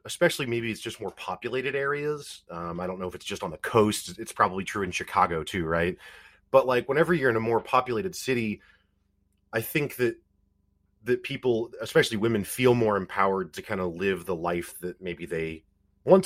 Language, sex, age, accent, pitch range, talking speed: English, male, 30-49, American, 95-135 Hz, 195 wpm